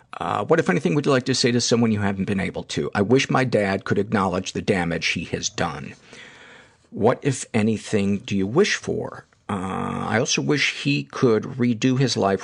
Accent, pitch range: American, 95-120 Hz